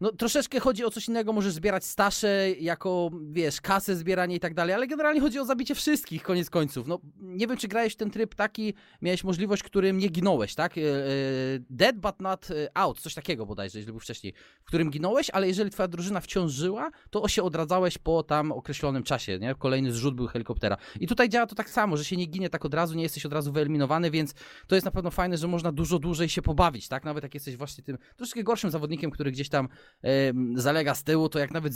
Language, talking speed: Polish, 225 wpm